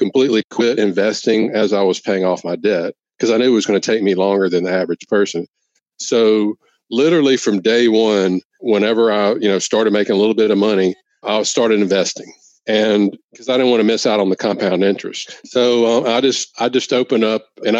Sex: male